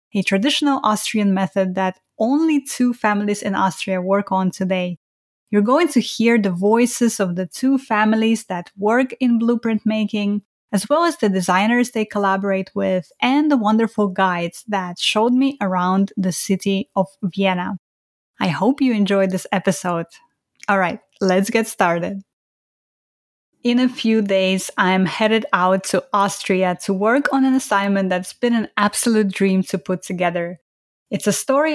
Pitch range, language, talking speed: 185-225 Hz, English, 160 wpm